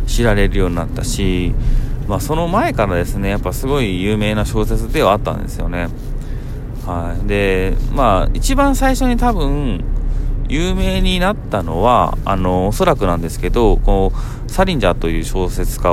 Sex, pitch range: male, 95-125 Hz